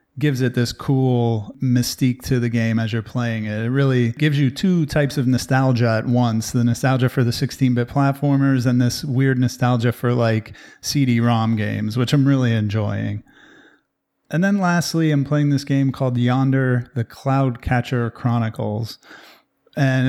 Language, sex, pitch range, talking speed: English, male, 125-145 Hz, 160 wpm